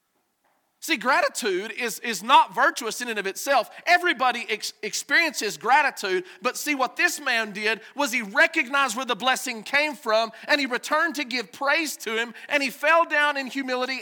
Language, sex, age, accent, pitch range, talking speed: English, male, 40-59, American, 190-285 Hz, 175 wpm